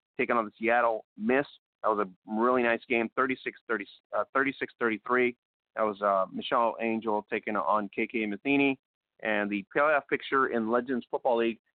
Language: English